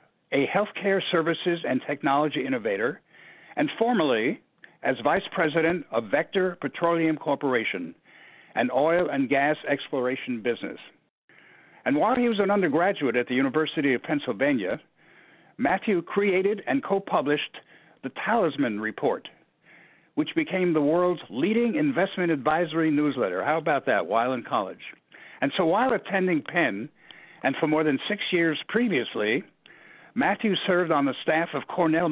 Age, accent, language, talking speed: 60-79, American, English, 135 wpm